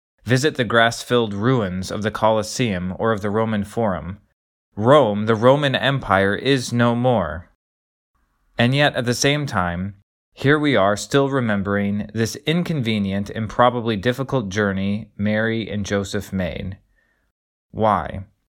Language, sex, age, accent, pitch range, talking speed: English, male, 20-39, American, 100-125 Hz, 130 wpm